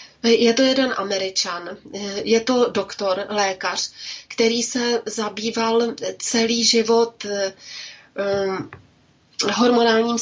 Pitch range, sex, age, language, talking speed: 205-230 Hz, female, 30-49, Slovak, 80 wpm